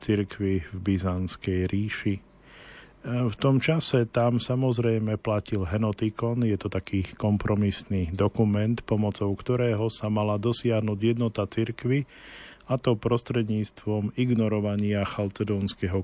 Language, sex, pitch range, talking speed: Slovak, male, 100-120 Hz, 105 wpm